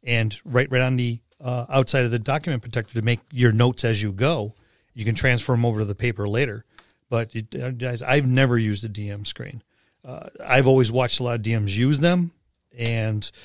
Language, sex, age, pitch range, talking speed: English, male, 40-59, 110-135 Hz, 210 wpm